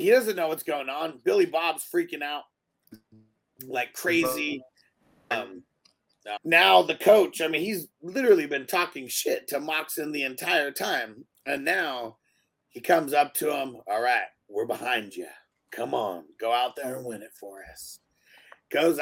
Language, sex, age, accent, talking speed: English, male, 30-49, American, 160 wpm